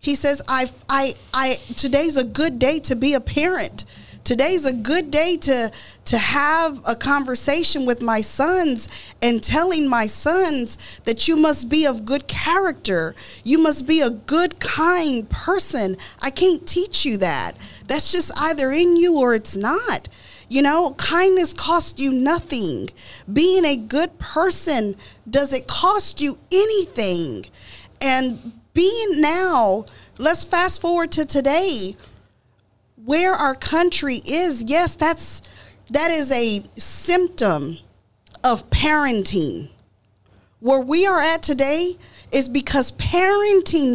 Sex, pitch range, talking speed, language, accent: female, 245-345 Hz, 135 wpm, English, American